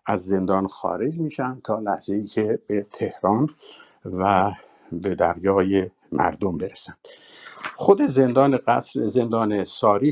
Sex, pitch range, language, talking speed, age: male, 105-145 Hz, Persian, 120 wpm, 60-79